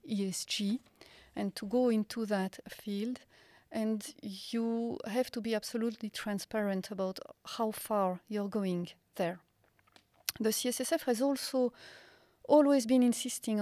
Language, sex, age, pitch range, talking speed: English, female, 40-59, 200-235 Hz, 120 wpm